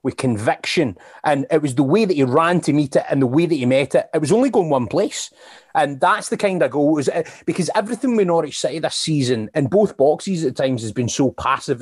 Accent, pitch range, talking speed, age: British, 130-160 Hz, 255 wpm, 30-49